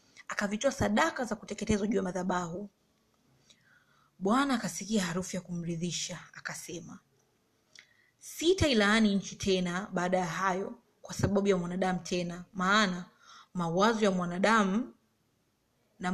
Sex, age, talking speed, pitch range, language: female, 30-49, 105 wpm, 185-230 Hz, Swahili